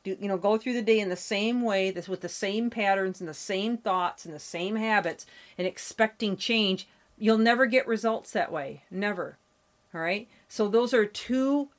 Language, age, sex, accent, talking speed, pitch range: English, 40-59, female, American, 195 wpm, 185-235 Hz